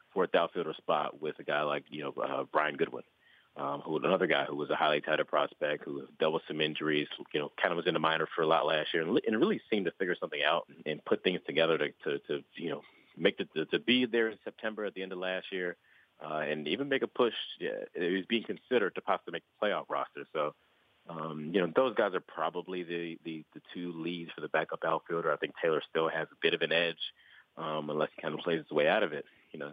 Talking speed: 260 wpm